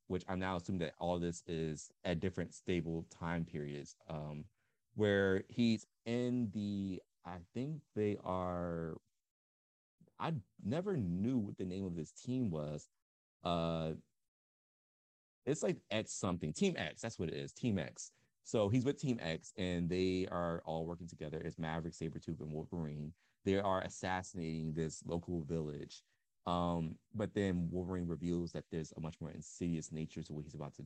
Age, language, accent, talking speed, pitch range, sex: 30-49, English, American, 165 wpm, 80-95 Hz, male